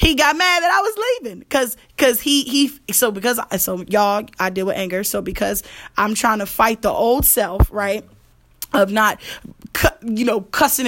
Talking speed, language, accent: 195 wpm, English, American